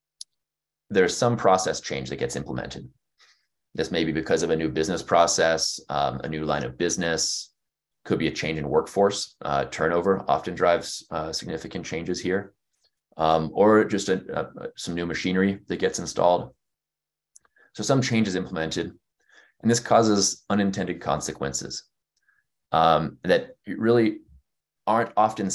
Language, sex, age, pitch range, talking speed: English, male, 20-39, 80-105 Hz, 140 wpm